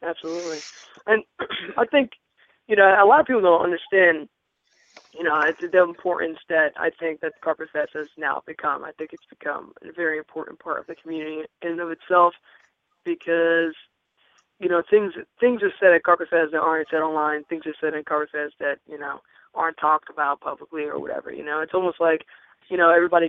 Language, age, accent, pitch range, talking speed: English, 20-39, American, 155-180 Hz, 200 wpm